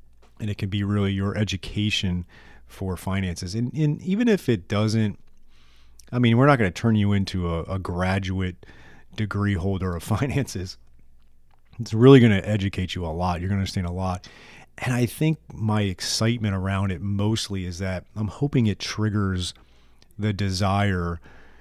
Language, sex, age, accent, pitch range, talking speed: English, male, 30-49, American, 90-105 Hz, 170 wpm